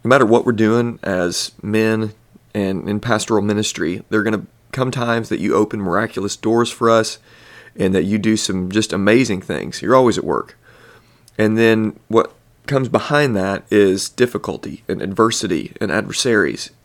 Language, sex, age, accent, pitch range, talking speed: English, male, 30-49, American, 100-120 Hz, 170 wpm